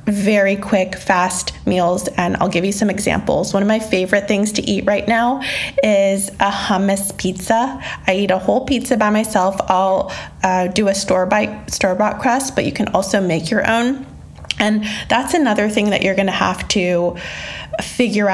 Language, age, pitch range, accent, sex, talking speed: English, 20-39, 180-210 Hz, American, female, 175 wpm